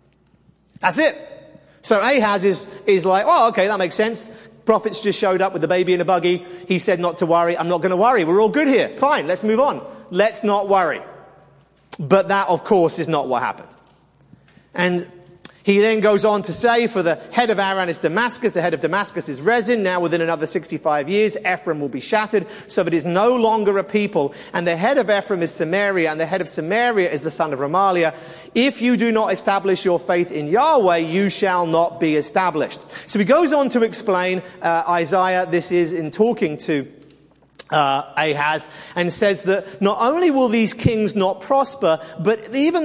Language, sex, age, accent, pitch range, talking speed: English, male, 40-59, British, 165-210 Hz, 205 wpm